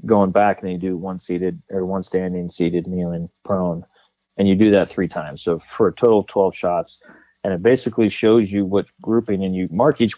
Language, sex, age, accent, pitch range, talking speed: English, male, 30-49, American, 90-105 Hz, 225 wpm